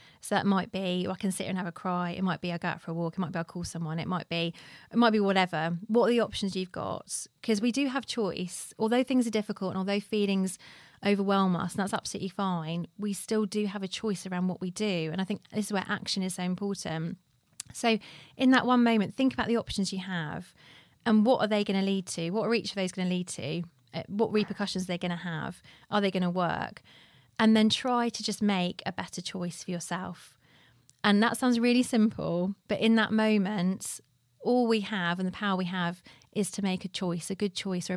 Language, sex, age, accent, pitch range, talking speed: English, female, 30-49, British, 175-215 Hz, 240 wpm